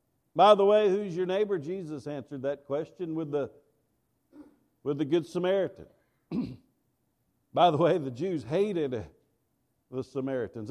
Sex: male